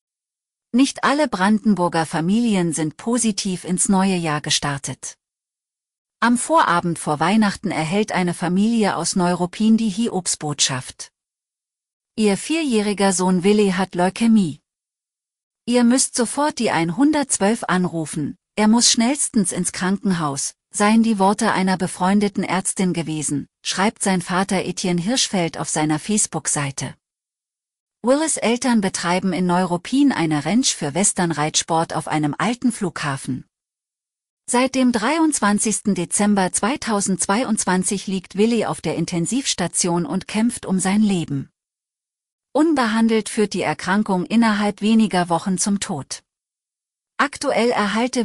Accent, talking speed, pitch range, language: German, 115 wpm, 170-220 Hz, German